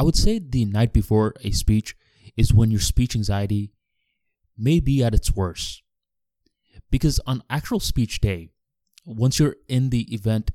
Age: 20-39